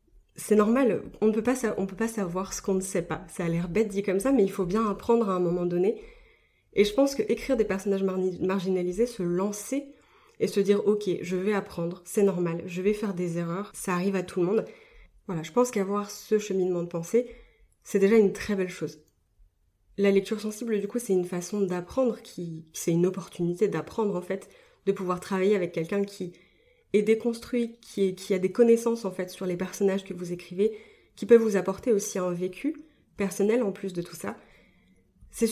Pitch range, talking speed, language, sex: 180-210 Hz, 215 wpm, French, female